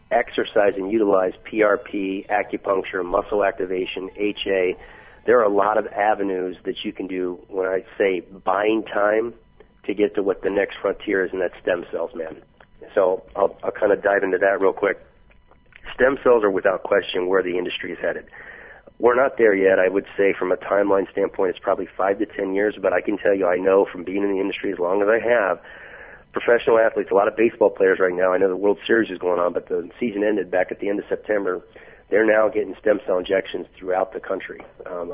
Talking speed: 215 wpm